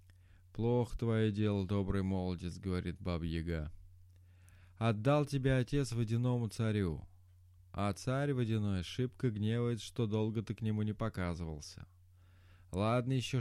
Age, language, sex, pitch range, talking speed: 20-39, Russian, male, 90-115 Hz, 135 wpm